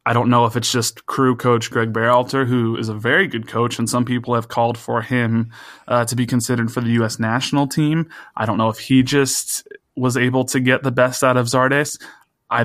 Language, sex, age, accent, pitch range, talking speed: English, male, 20-39, American, 115-130 Hz, 230 wpm